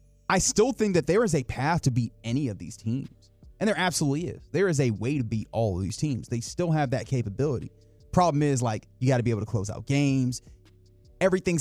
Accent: American